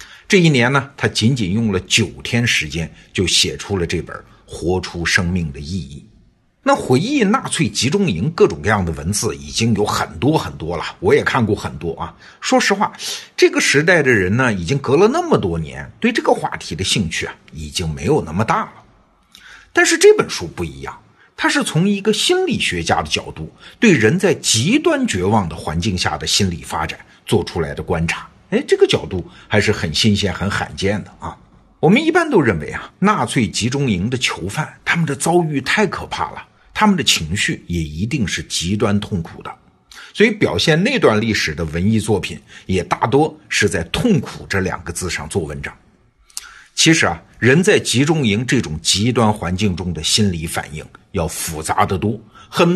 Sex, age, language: male, 60-79, Chinese